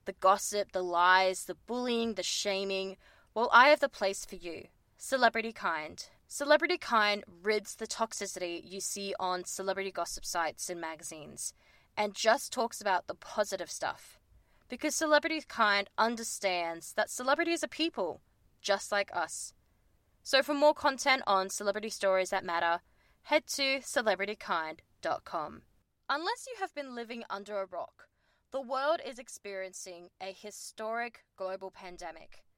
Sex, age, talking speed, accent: female, 20-39, 140 wpm, Australian